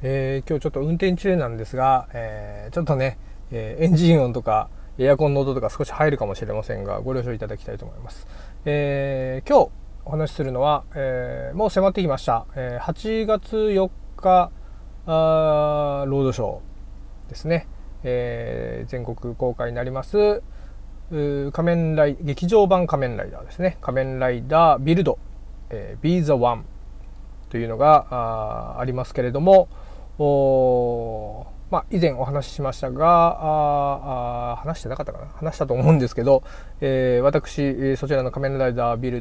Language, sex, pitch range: Japanese, male, 115-155 Hz